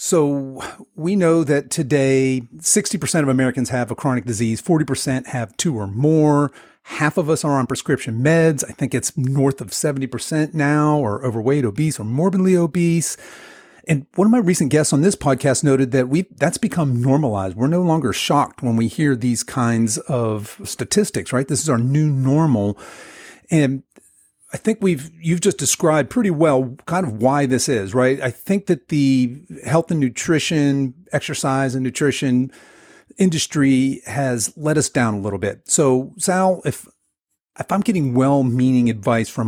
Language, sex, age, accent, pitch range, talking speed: English, male, 40-59, American, 125-160 Hz, 170 wpm